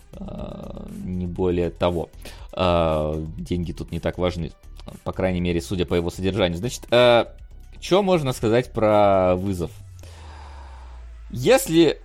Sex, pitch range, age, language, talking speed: male, 90-150 Hz, 20-39, Russian, 110 wpm